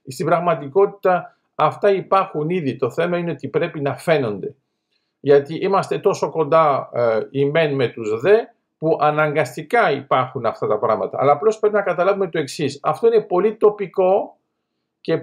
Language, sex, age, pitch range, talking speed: Greek, male, 50-69, 150-210 Hz, 155 wpm